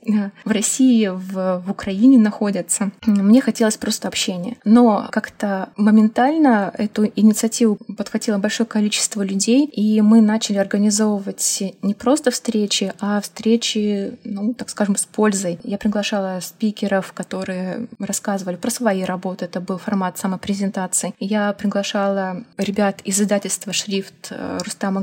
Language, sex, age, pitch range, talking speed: Russian, female, 20-39, 185-215 Hz, 125 wpm